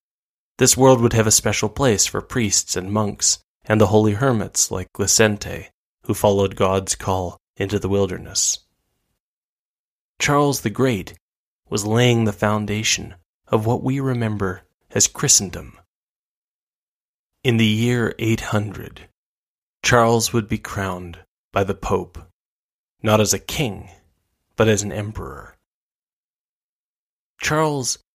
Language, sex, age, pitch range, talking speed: English, male, 20-39, 100-115 Hz, 120 wpm